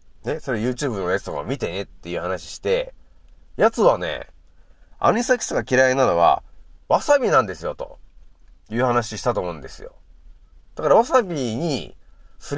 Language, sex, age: Japanese, male, 30-49